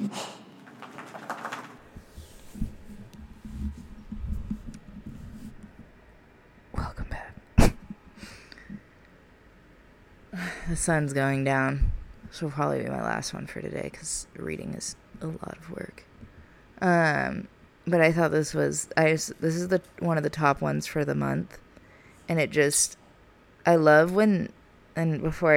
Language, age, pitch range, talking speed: English, 20-39, 130-165 Hz, 115 wpm